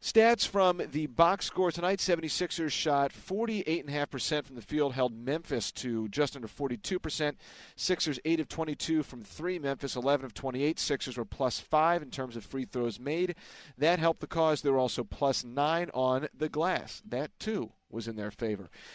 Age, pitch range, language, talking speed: 40-59, 130-165 Hz, English, 175 wpm